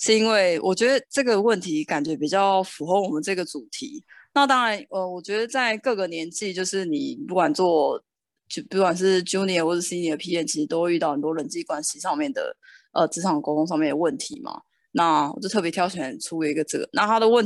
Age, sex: 20-39, female